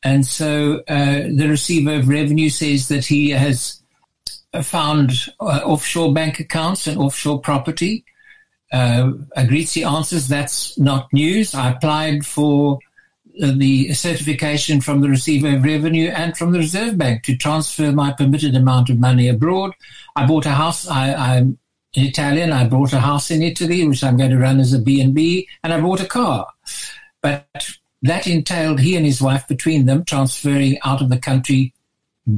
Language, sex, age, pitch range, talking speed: English, male, 60-79, 135-160 Hz, 165 wpm